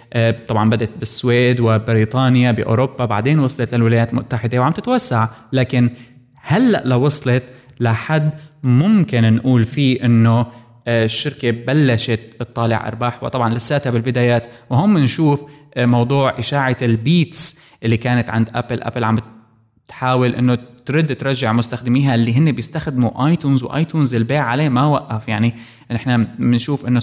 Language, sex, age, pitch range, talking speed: Arabic, male, 20-39, 115-140 Hz, 120 wpm